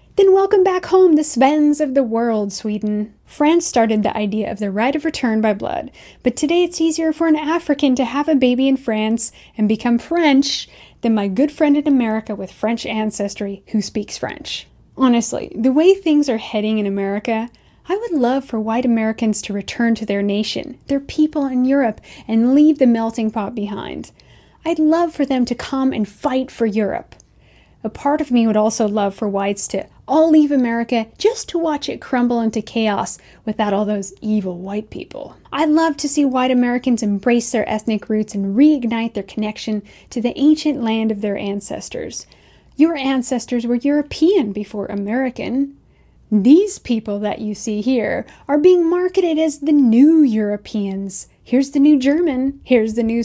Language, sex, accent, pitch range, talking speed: English, female, American, 215-290 Hz, 180 wpm